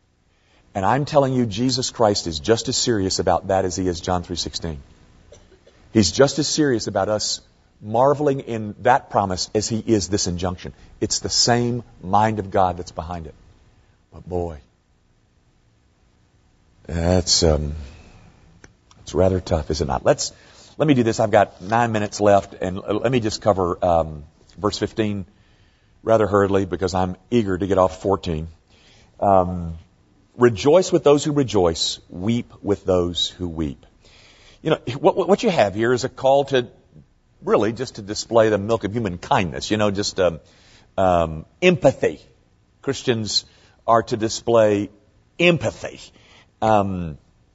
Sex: male